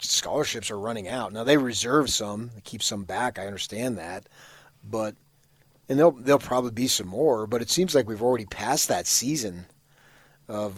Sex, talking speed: male, 185 wpm